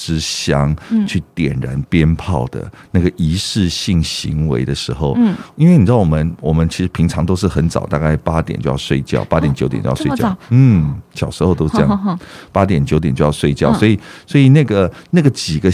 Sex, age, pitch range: male, 50-69, 75-105 Hz